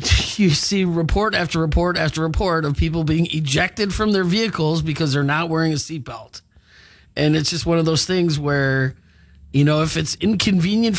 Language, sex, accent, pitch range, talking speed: English, male, American, 130-170 Hz, 180 wpm